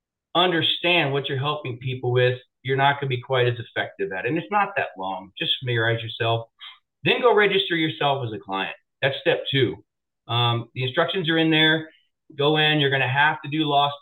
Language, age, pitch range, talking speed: English, 30-49, 130-165 Hz, 210 wpm